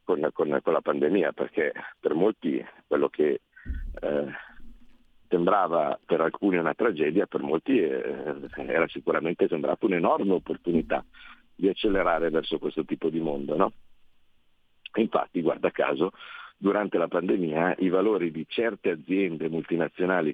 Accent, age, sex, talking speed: native, 50-69, male, 125 wpm